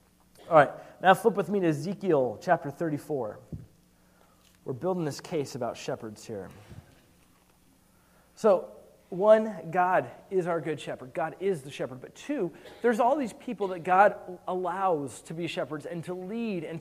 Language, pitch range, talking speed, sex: English, 155-195 Hz, 155 wpm, male